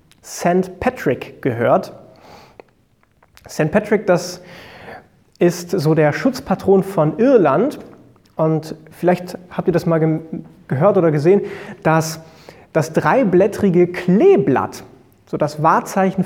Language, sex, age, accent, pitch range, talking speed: German, male, 30-49, German, 155-195 Hz, 105 wpm